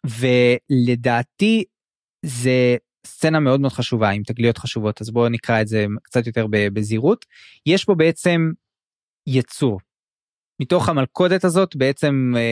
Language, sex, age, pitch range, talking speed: Hebrew, male, 20-39, 120-160 Hz, 120 wpm